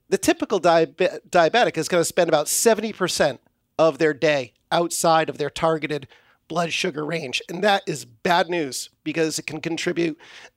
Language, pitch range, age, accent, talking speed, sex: English, 145-180 Hz, 40-59, American, 160 wpm, male